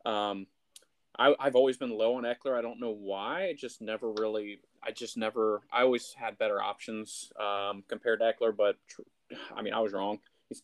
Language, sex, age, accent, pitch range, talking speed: English, male, 20-39, American, 100-120 Hz, 195 wpm